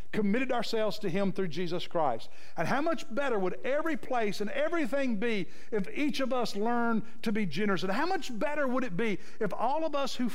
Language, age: English, 60-79